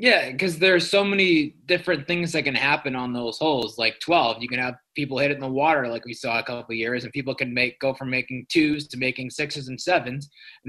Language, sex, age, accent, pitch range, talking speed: English, male, 20-39, American, 125-155 Hz, 255 wpm